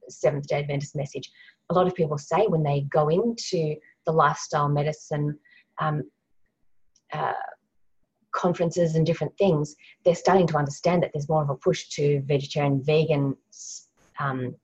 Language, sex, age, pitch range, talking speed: English, female, 30-49, 140-165 Hz, 145 wpm